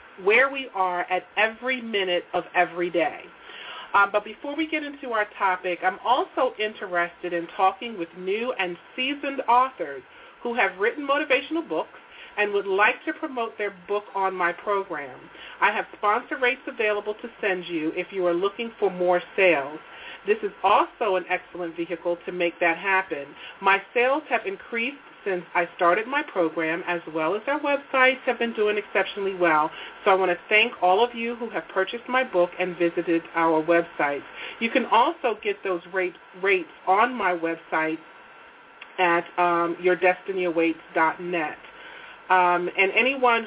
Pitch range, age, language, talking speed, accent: 175-245 Hz, 40-59, English, 160 wpm, American